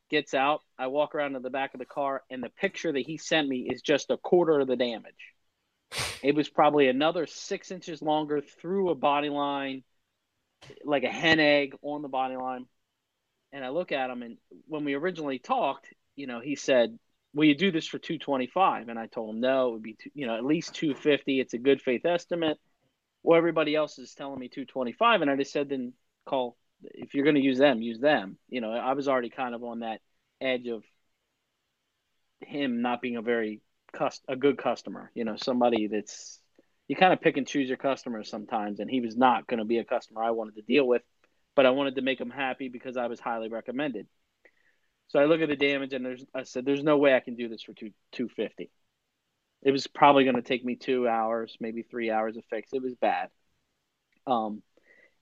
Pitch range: 120-150 Hz